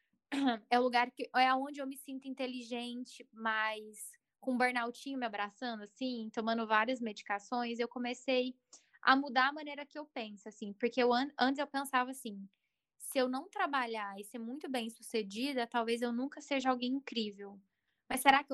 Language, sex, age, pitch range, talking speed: Portuguese, female, 10-29, 225-265 Hz, 170 wpm